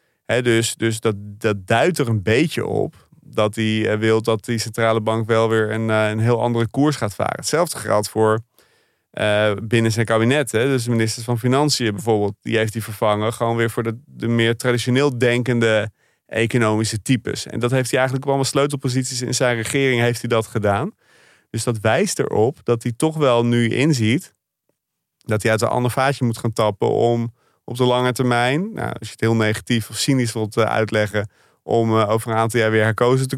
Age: 30-49